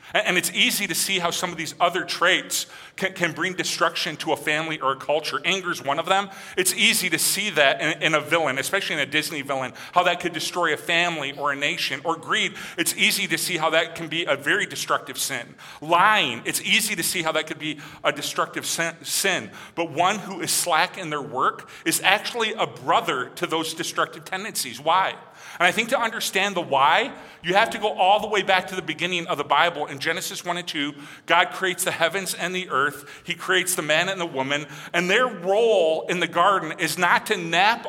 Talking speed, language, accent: 225 wpm, English, American